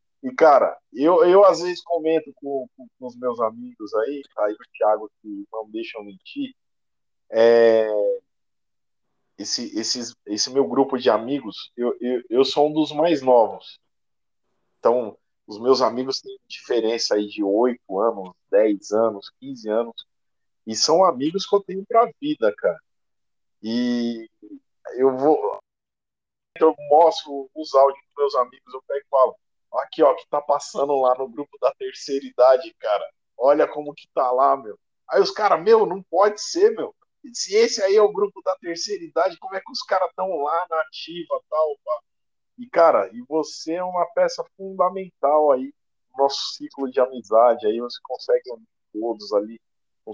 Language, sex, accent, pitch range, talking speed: Portuguese, male, Brazilian, 115-190 Hz, 170 wpm